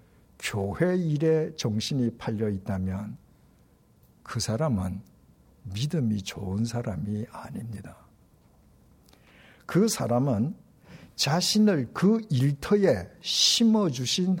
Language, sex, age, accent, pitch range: Korean, male, 60-79, native, 105-170 Hz